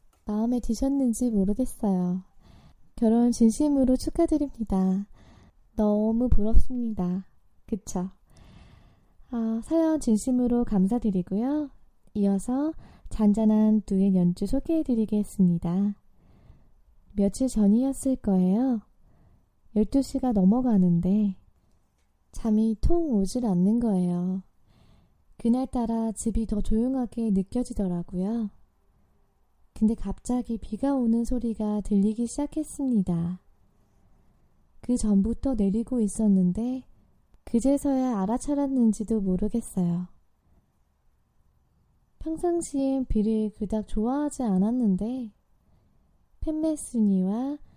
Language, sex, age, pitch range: Korean, female, 20-39, 195-250 Hz